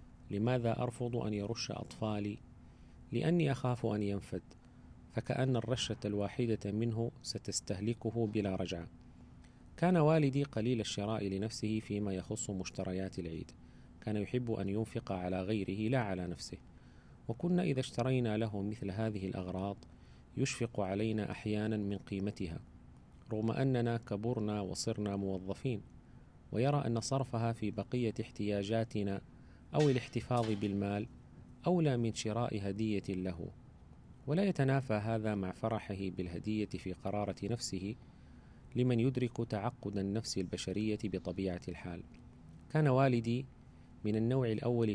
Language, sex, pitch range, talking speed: Arabic, male, 95-120 Hz, 115 wpm